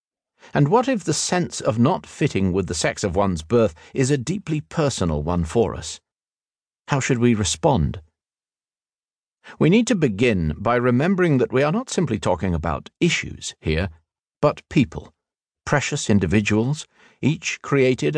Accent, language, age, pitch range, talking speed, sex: British, English, 50-69, 85-135 Hz, 150 wpm, male